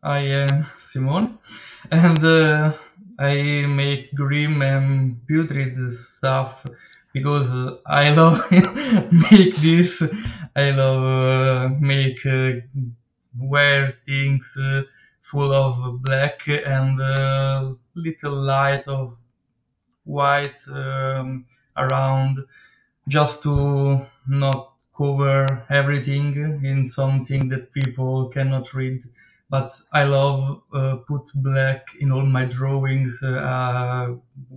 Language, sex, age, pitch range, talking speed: English, male, 20-39, 130-145 Hz, 100 wpm